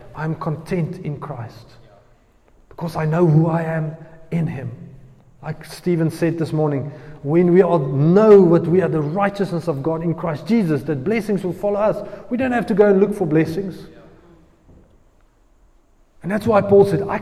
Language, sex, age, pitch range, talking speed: English, male, 30-49, 160-210 Hz, 180 wpm